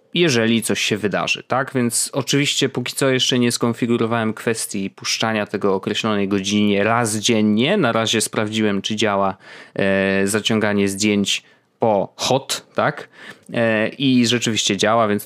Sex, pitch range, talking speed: male, 110-140 Hz, 130 wpm